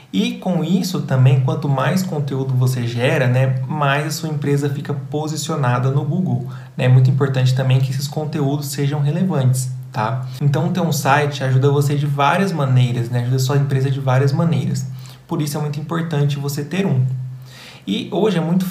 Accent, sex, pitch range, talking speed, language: Brazilian, male, 130-145 Hz, 185 wpm, Portuguese